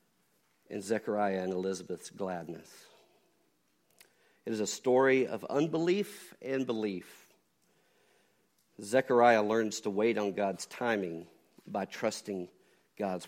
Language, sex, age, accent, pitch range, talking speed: English, male, 50-69, American, 95-120 Hz, 105 wpm